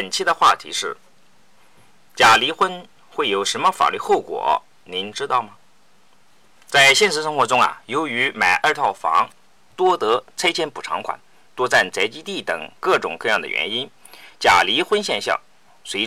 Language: Chinese